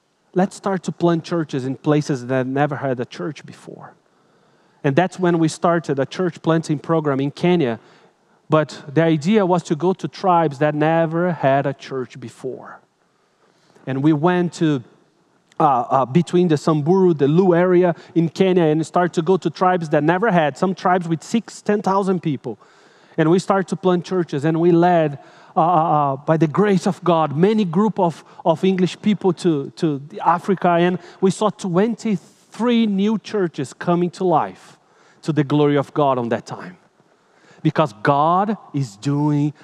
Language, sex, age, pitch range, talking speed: English, male, 30-49, 150-185 Hz, 170 wpm